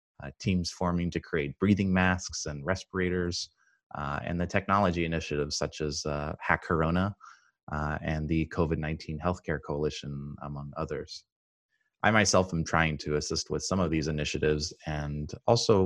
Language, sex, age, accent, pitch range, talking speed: English, male, 30-49, American, 75-95 Hz, 150 wpm